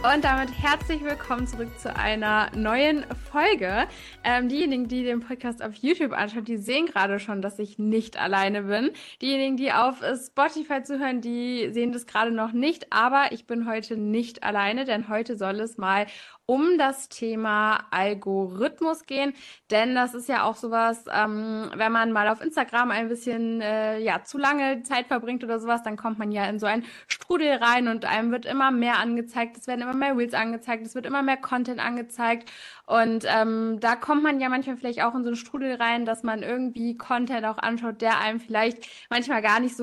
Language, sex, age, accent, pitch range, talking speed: German, female, 20-39, German, 220-265 Hz, 195 wpm